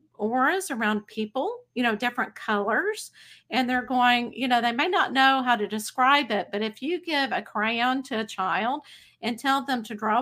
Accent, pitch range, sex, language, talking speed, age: American, 215-260 Hz, female, English, 200 wpm, 50-69